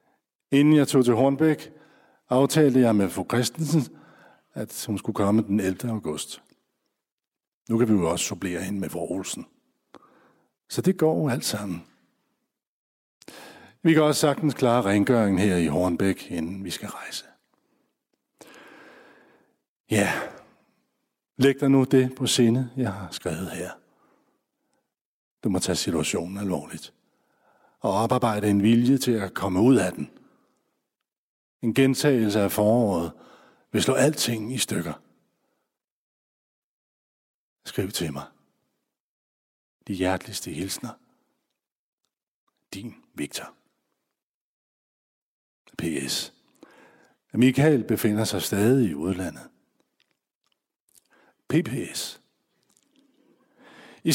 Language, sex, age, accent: English, male, 60-79, Danish